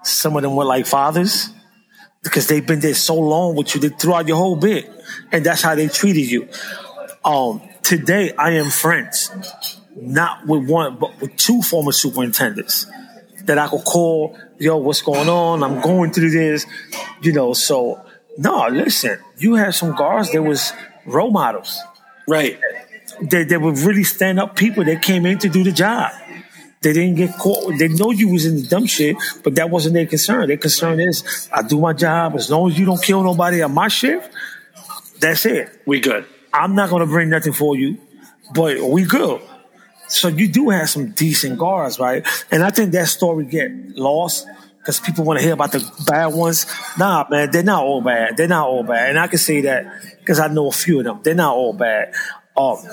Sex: male